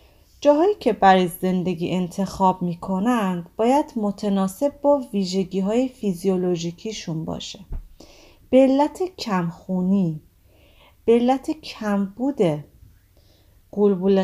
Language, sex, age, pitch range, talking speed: English, female, 30-49, 175-240 Hz, 90 wpm